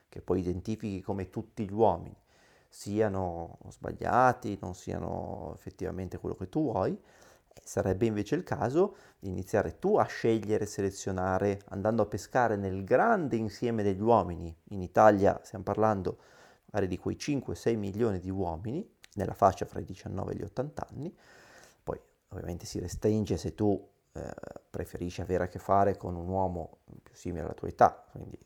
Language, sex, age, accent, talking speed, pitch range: Italian, male, 30-49, native, 155 wpm, 95-110 Hz